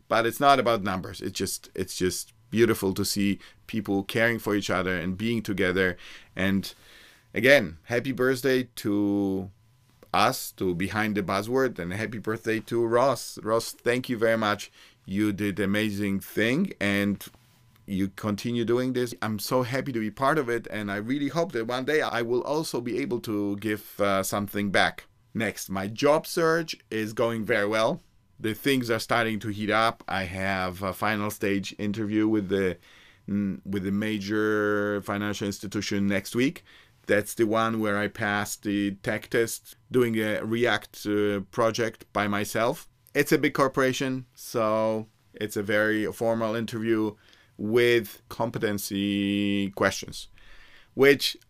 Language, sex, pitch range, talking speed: English, male, 100-120 Hz, 155 wpm